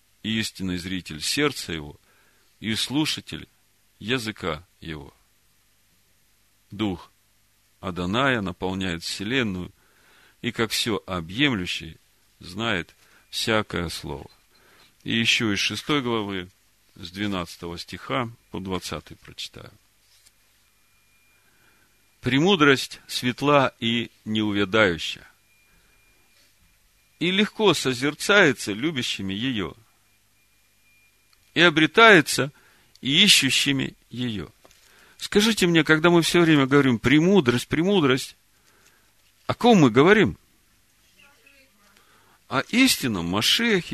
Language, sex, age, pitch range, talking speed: Russian, male, 40-59, 95-130 Hz, 85 wpm